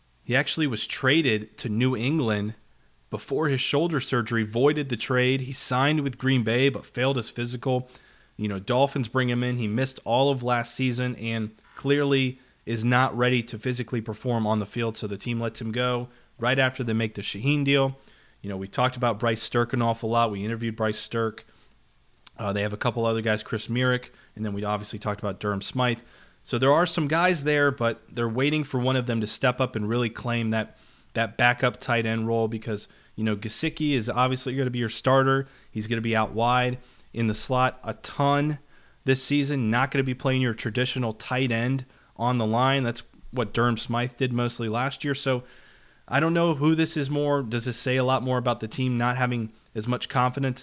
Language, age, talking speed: English, 30-49, 215 wpm